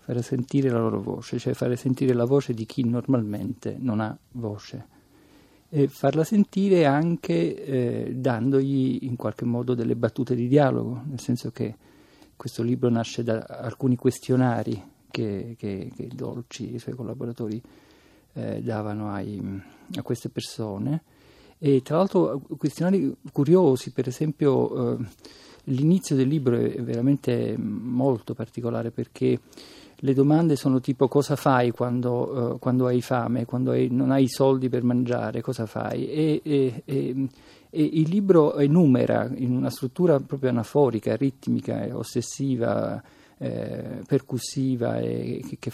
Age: 50-69